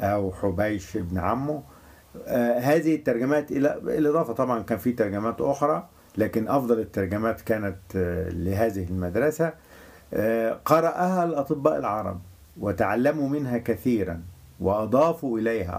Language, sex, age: English, male, 50-69